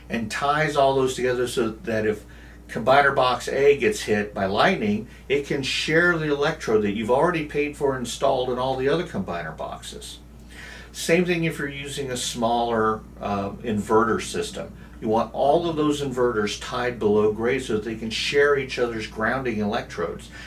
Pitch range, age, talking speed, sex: 100-135 Hz, 50-69, 175 wpm, male